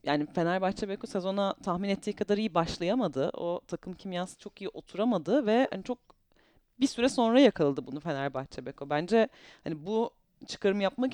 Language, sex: Turkish, female